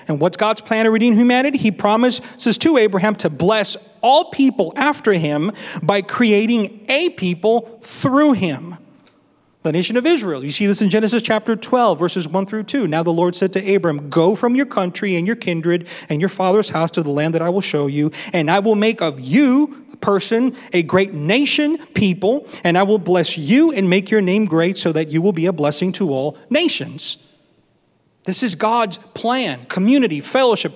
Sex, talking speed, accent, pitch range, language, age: male, 195 wpm, American, 180-235 Hz, English, 30-49